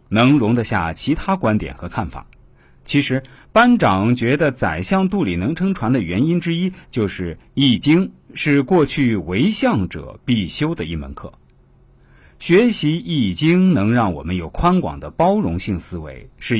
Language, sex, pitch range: Chinese, male, 95-150 Hz